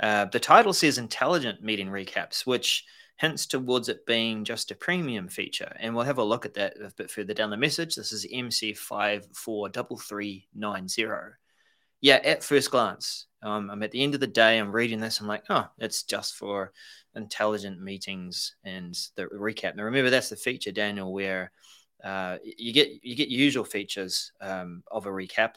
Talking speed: 180 wpm